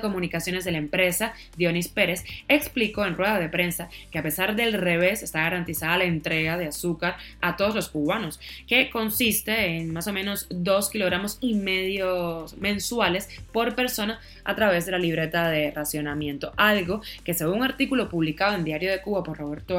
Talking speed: 175 wpm